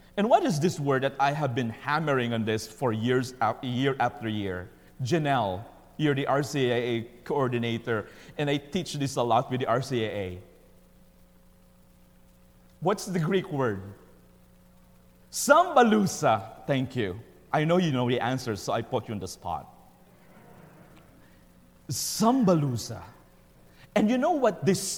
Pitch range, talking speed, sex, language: 115-190 Hz, 135 wpm, male, English